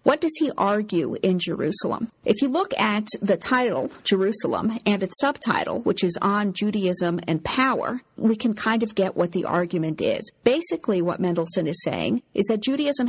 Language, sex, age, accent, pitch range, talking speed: English, female, 50-69, American, 180-225 Hz, 180 wpm